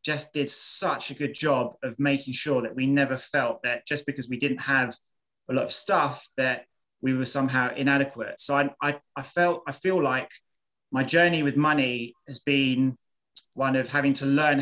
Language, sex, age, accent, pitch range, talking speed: English, male, 20-39, British, 130-145 Hz, 195 wpm